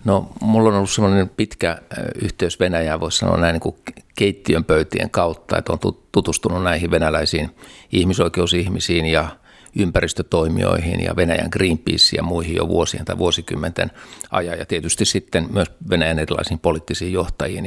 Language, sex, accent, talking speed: Finnish, male, native, 145 wpm